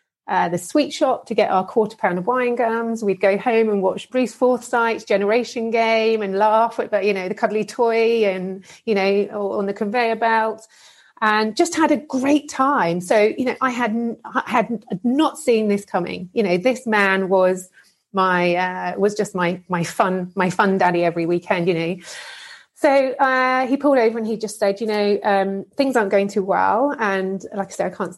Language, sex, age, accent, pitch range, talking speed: English, female, 30-49, British, 185-230 Hz, 200 wpm